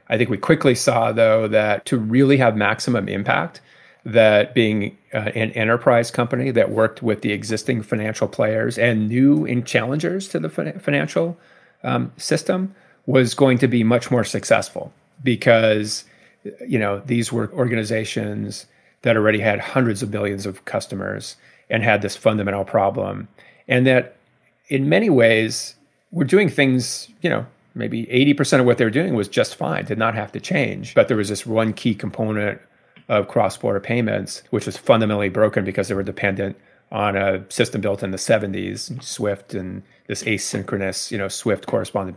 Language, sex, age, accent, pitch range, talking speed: English, male, 40-59, American, 105-130 Hz, 165 wpm